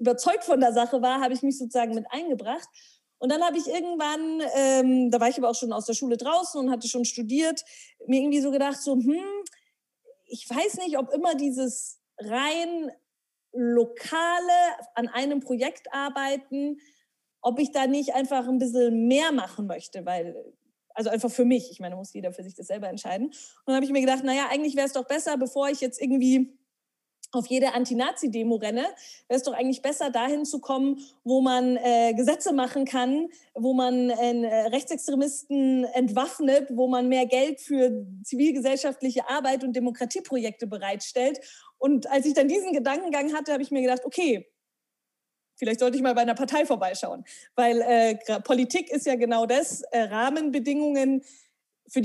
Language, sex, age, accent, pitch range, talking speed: German, female, 30-49, German, 245-285 Hz, 180 wpm